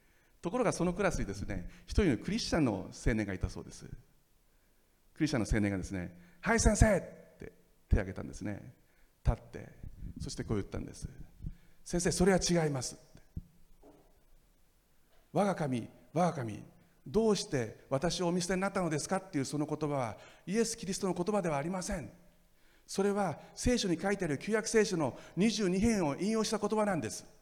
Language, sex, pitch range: Japanese, male, 145-195 Hz